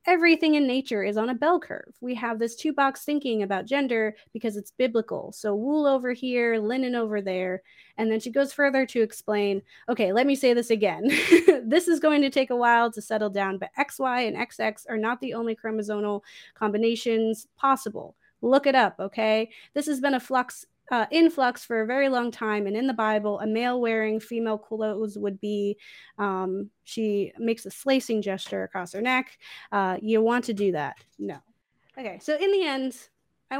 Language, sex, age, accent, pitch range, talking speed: English, female, 20-39, American, 210-260 Hz, 195 wpm